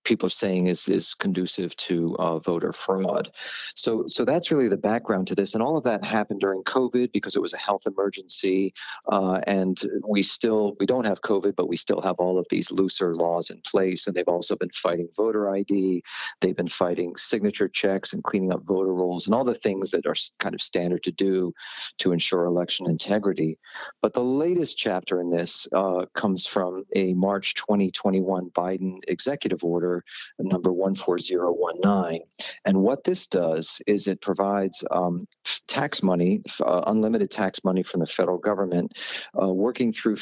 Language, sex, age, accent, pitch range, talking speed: English, male, 40-59, American, 90-100 Hz, 180 wpm